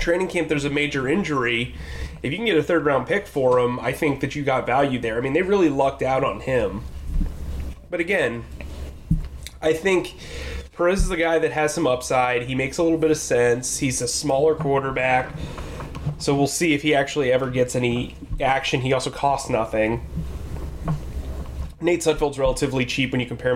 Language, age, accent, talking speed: English, 20-39, American, 190 wpm